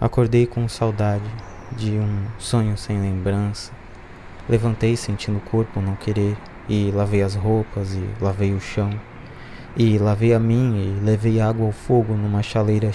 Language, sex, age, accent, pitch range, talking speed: Portuguese, male, 20-39, Brazilian, 100-115 Hz, 155 wpm